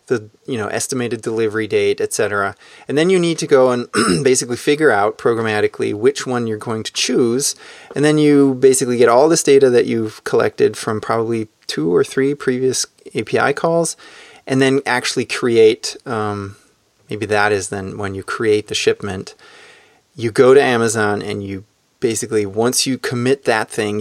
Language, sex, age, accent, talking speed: English, male, 30-49, American, 170 wpm